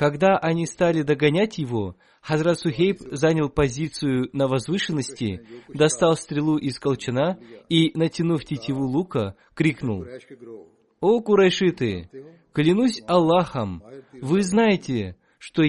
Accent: native